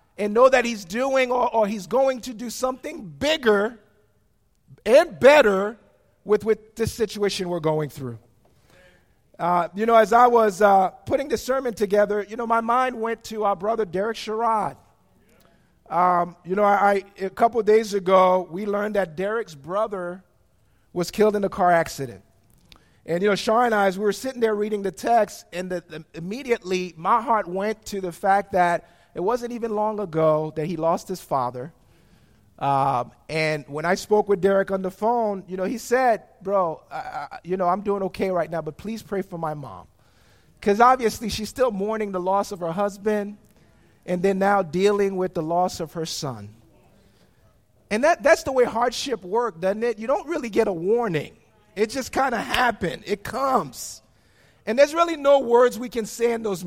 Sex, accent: male, American